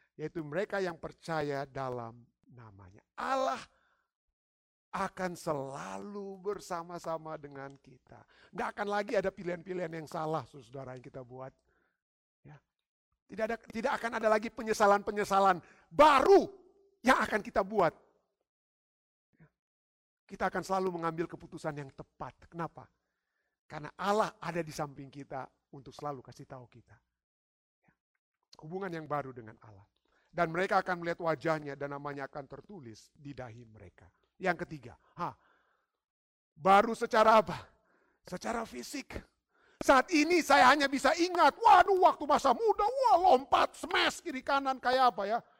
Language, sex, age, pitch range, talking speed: Indonesian, male, 50-69, 140-220 Hz, 135 wpm